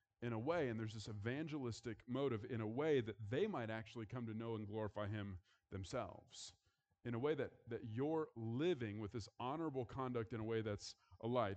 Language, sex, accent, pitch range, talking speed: English, male, American, 115-150 Hz, 200 wpm